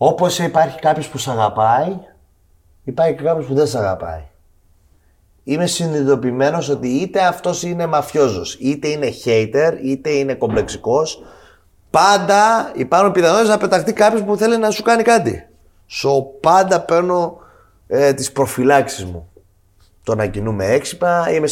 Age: 30-49